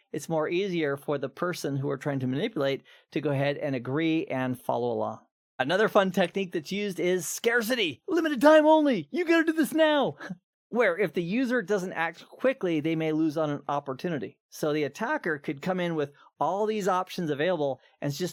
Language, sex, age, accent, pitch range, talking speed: English, male, 40-59, American, 140-180 Hz, 200 wpm